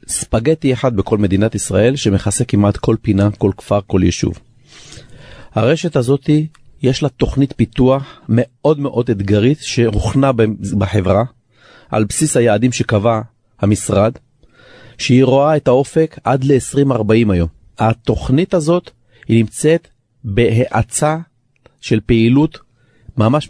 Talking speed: 110 wpm